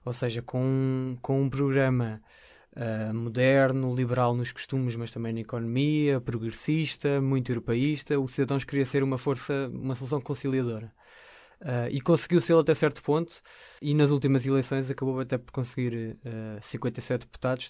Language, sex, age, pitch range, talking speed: Portuguese, male, 20-39, 120-140 Hz, 155 wpm